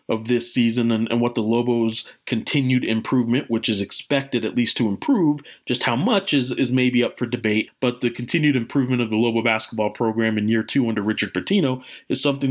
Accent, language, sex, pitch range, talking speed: American, English, male, 110-135 Hz, 205 wpm